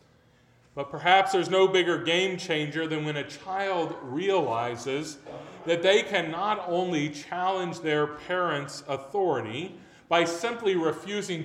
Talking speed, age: 125 wpm, 40-59